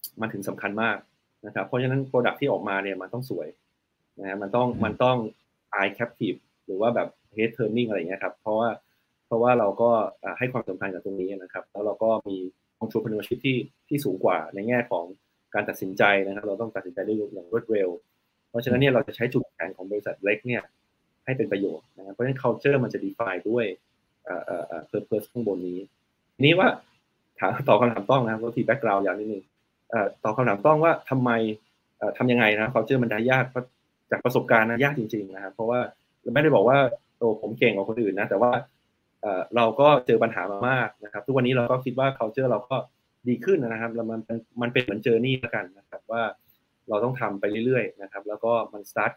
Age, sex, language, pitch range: 20-39, male, Thai, 105-125 Hz